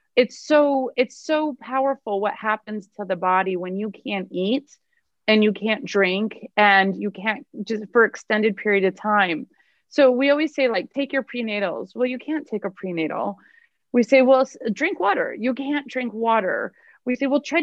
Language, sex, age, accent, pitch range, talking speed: English, female, 30-49, American, 185-255 Hz, 185 wpm